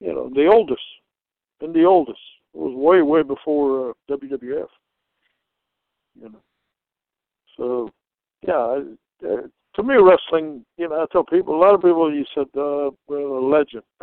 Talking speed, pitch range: 165 wpm, 135-160 Hz